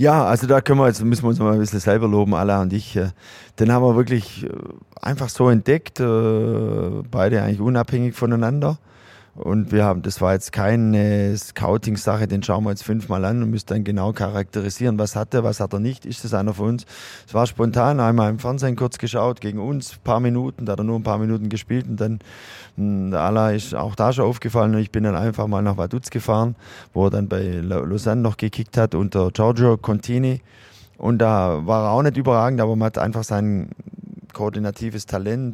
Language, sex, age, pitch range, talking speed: German, male, 20-39, 105-125 Hz, 205 wpm